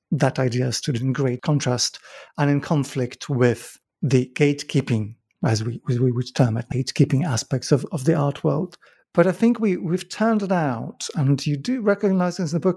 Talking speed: 195 wpm